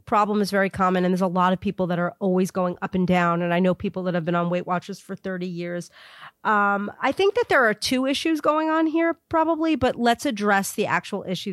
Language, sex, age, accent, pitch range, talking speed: English, female, 30-49, American, 180-215 Hz, 250 wpm